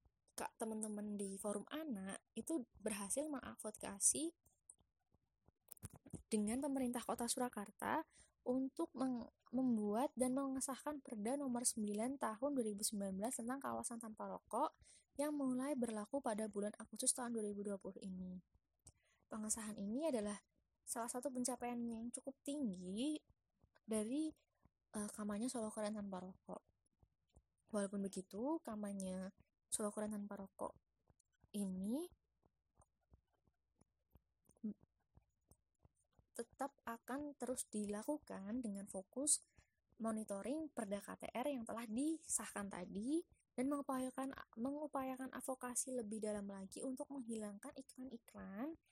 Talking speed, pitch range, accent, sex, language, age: 100 wpm, 210-265 Hz, native, female, Indonesian, 20-39